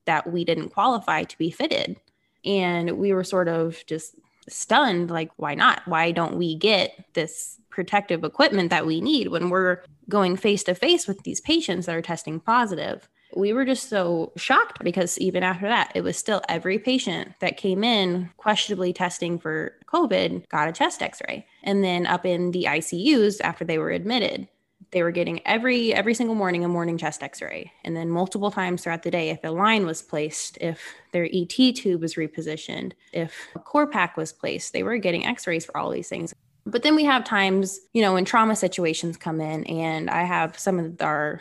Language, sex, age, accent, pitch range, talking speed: English, female, 10-29, American, 165-200 Hz, 195 wpm